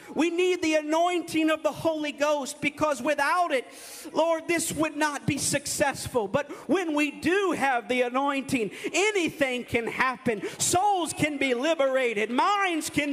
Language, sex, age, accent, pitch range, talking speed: English, male, 50-69, American, 270-330 Hz, 150 wpm